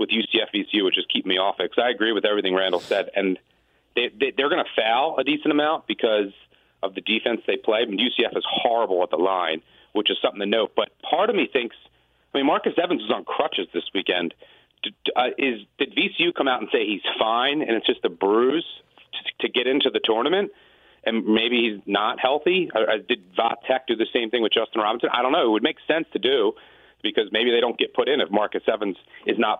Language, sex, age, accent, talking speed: English, male, 40-59, American, 235 wpm